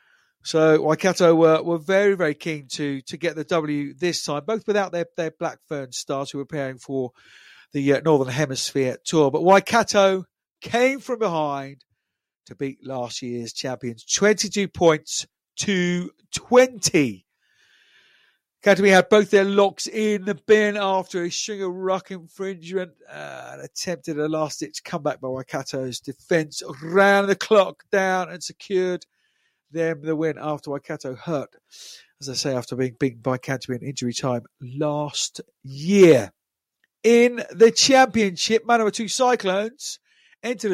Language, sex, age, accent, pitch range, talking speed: English, male, 50-69, British, 135-190 Hz, 140 wpm